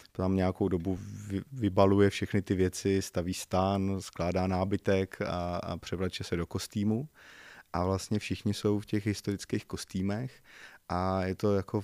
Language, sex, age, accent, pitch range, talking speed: Czech, male, 20-39, native, 90-100 Hz, 140 wpm